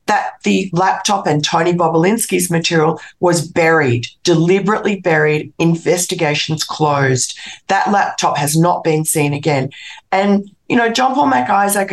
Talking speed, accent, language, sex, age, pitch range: 130 wpm, Australian, English, female, 40-59, 150-195 Hz